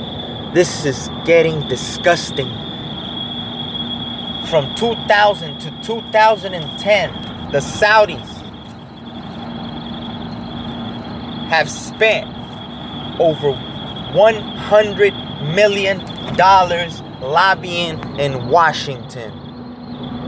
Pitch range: 130-185 Hz